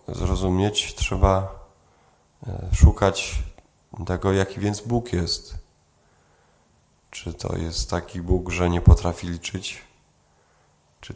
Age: 20-39